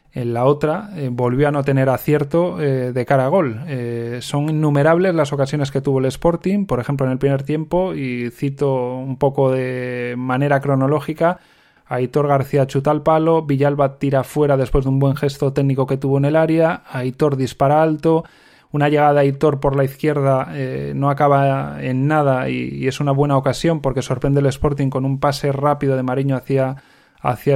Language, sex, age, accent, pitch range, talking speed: Spanish, male, 20-39, Spanish, 135-150 Hz, 190 wpm